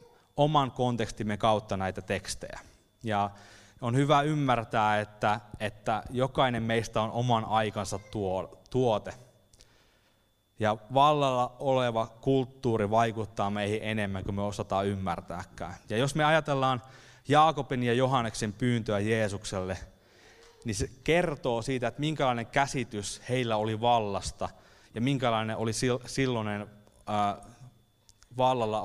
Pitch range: 105-130 Hz